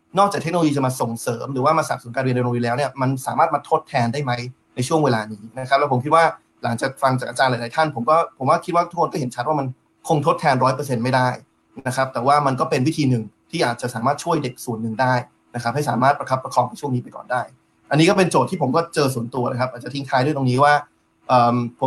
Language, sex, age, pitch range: Thai, male, 30-49, 125-150 Hz